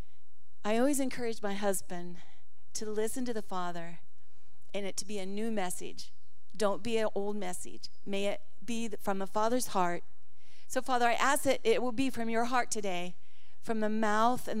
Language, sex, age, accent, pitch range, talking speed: English, female, 40-59, American, 190-230 Hz, 185 wpm